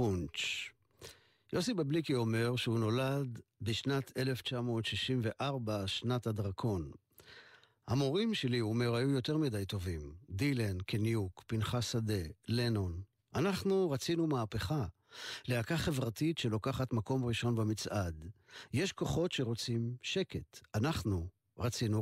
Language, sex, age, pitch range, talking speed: Hebrew, male, 50-69, 110-140 Hz, 105 wpm